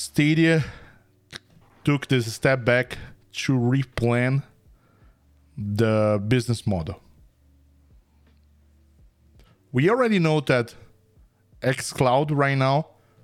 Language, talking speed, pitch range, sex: English, 75 wpm, 100-130 Hz, male